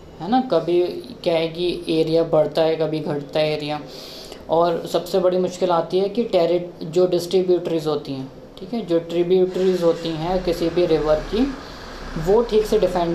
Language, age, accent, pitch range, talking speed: Hindi, 20-39, native, 155-185 Hz, 185 wpm